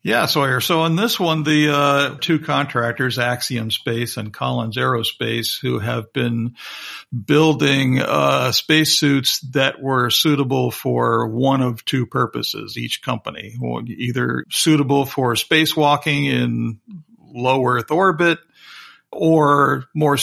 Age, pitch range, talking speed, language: 50-69, 115-145 Hz, 120 wpm, English